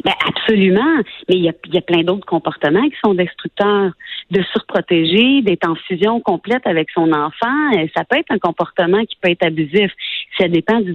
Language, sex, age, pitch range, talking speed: French, female, 40-59, 180-260 Hz, 195 wpm